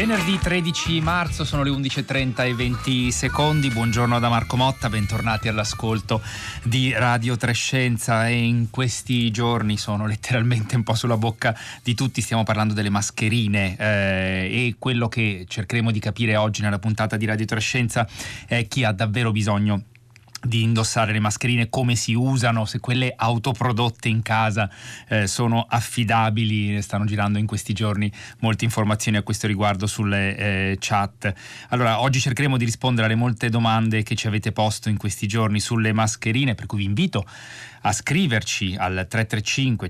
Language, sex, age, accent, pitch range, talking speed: Italian, male, 30-49, native, 105-120 Hz, 160 wpm